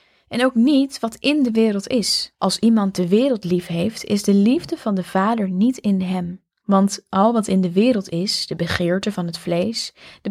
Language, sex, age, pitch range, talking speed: Dutch, female, 10-29, 185-240 Hz, 210 wpm